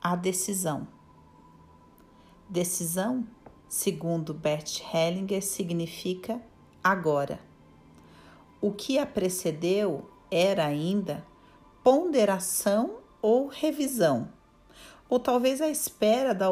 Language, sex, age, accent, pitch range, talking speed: Portuguese, female, 40-59, Brazilian, 180-240 Hz, 80 wpm